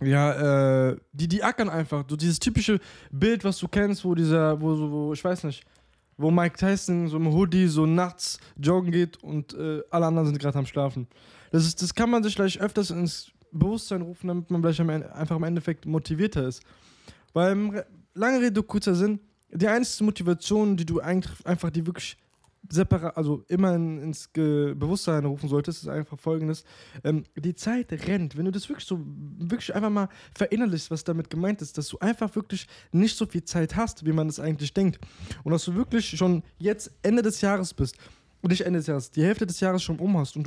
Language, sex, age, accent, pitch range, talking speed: German, male, 10-29, German, 150-195 Hz, 205 wpm